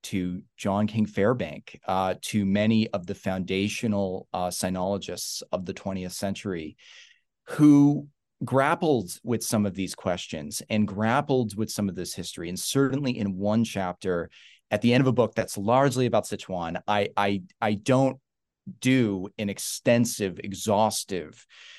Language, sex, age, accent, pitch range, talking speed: English, male, 30-49, American, 100-125 Hz, 145 wpm